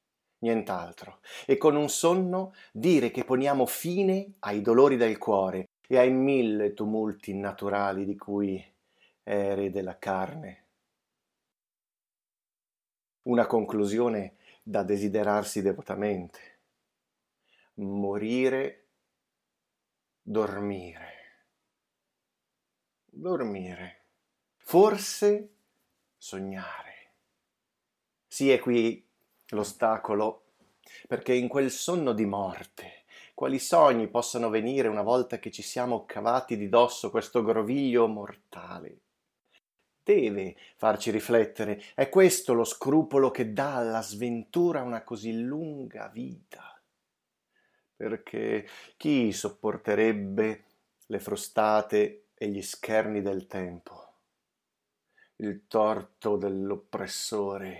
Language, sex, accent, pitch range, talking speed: Italian, male, native, 100-130 Hz, 90 wpm